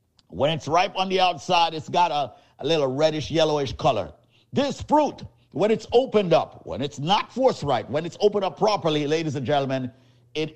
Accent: American